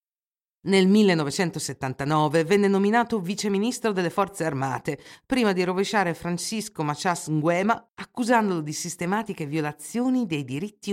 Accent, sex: native, female